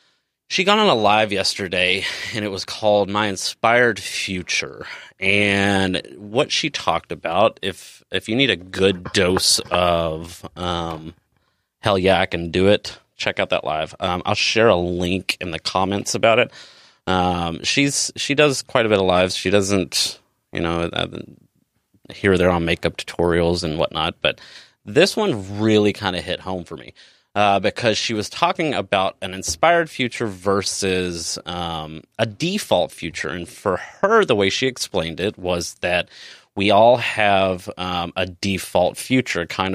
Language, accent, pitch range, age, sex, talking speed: English, American, 90-105 Hz, 30-49, male, 165 wpm